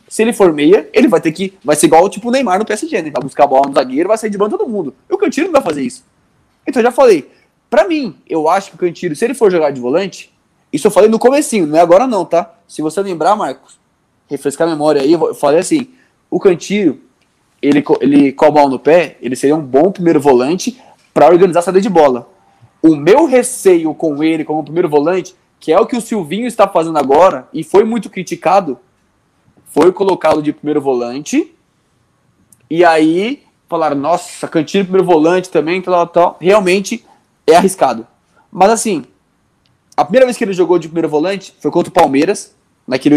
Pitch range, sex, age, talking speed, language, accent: 155-210 Hz, male, 20-39, 210 wpm, Portuguese, Brazilian